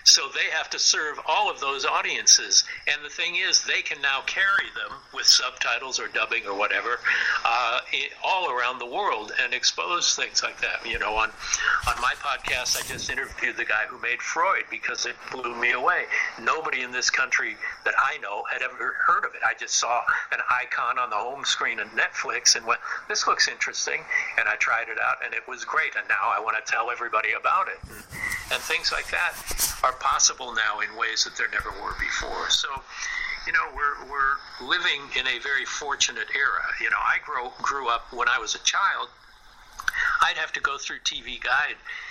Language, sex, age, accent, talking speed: English, male, 60-79, American, 200 wpm